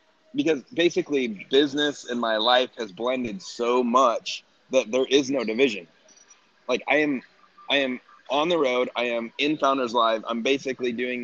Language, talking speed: English, 165 wpm